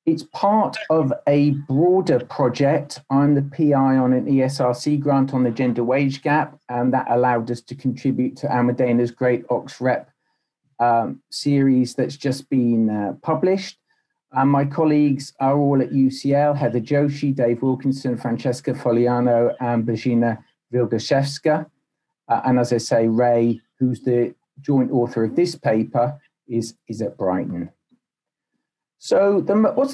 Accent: British